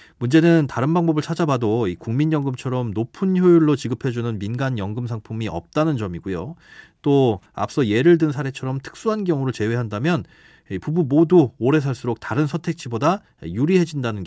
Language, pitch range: Korean, 110-160 Hz